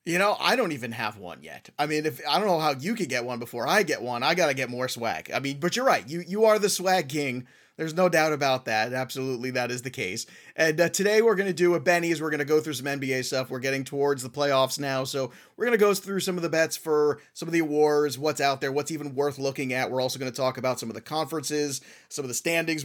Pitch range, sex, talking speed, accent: 130-160 Hz, male, 290 wpm, American